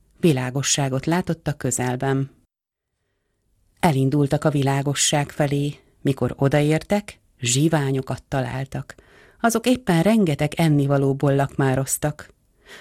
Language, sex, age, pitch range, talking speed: Hungarian, female, 30-49, 135-170 Hz, 75 wpm